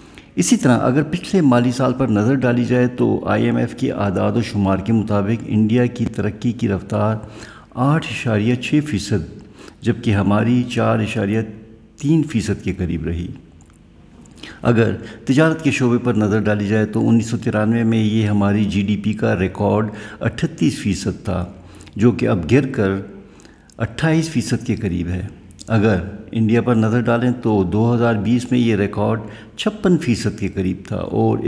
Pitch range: 100-120 Hz